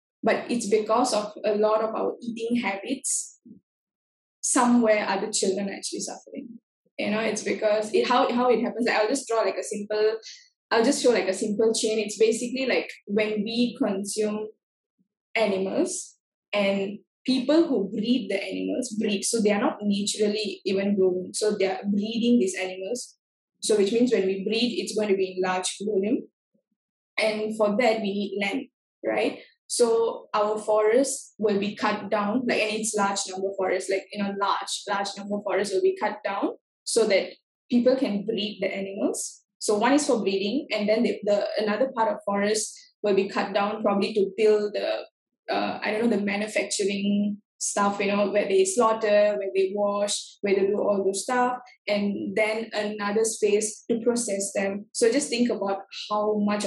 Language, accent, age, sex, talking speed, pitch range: Telugu, native, 10-29, female, 185 wpm, 200-235 Hz